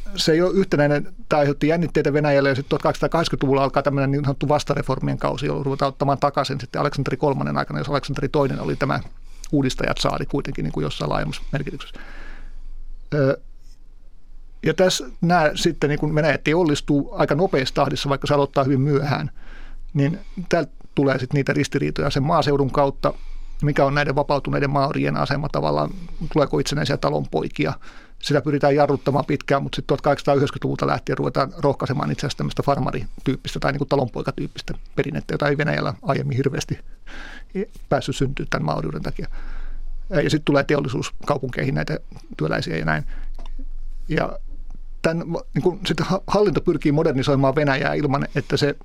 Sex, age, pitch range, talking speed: male, 50-69, 135-150 Hz, 145 wpm